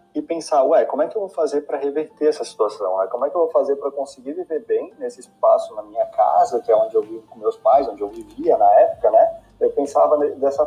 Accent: Brazilian